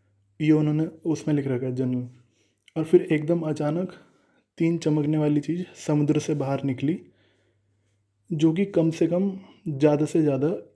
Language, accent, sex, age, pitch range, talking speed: Hindi, native, male, 20-39, 130-160 Hz, 145 wpm